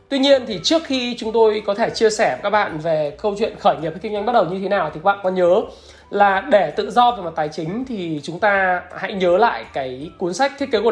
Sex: male